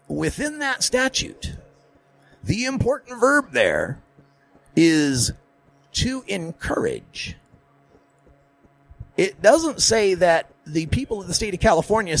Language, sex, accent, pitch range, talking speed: English, male, American, 160-260 Hz, 105 wpm